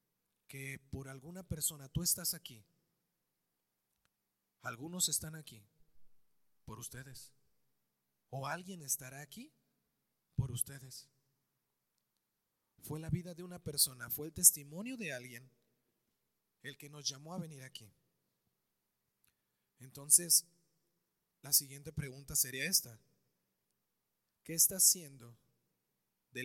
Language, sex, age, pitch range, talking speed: Spanish, male, 30-49, 125-175 Hz, 105 wpm